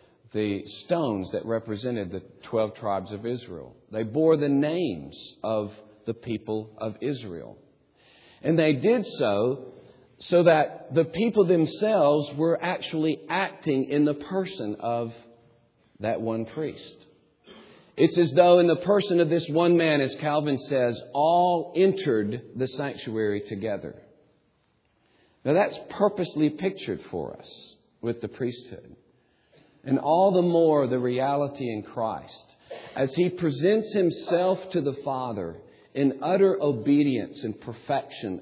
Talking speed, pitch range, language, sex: 130 wpm, 110-165 Hz, English, male